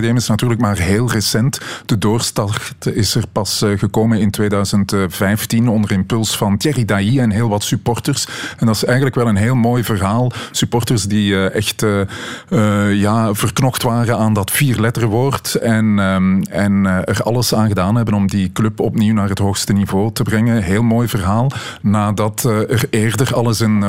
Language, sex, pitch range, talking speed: Dutch, male, 100-115 Hz, 160 wpm